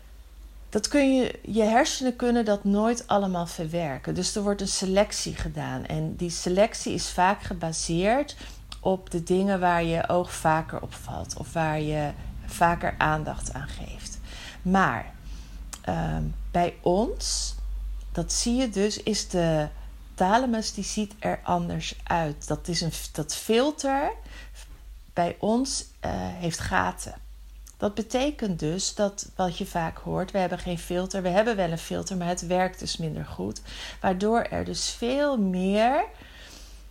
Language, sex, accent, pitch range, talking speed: Dutch, female, Dutch, 155-205 Hz, 140 wpm